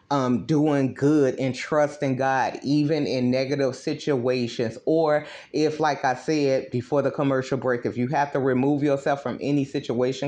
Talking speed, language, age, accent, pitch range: 165 wpm, English, 30-49, American, 130-150 Hz